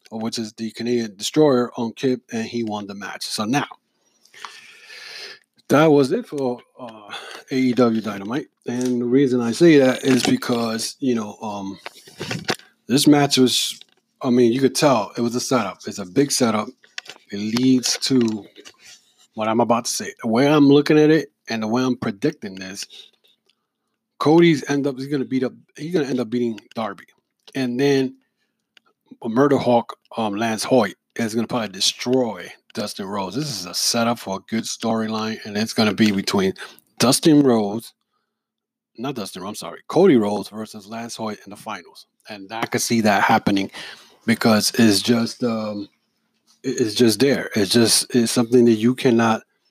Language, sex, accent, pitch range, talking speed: English, male, American, 110-135 Hz, 170 wpm